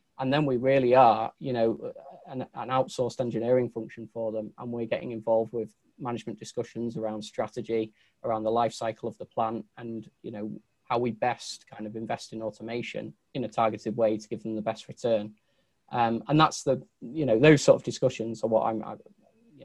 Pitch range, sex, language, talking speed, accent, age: 110-120 Hz, male, English, 200 wpm, British, 20-39